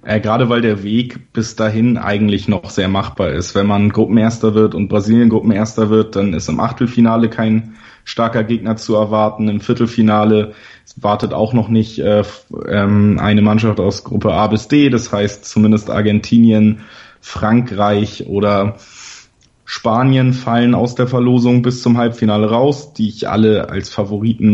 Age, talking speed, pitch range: 20-39, 150 wpm, 105-120 Hz